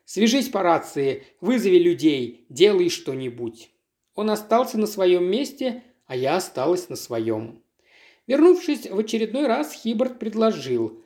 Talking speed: 125 wpm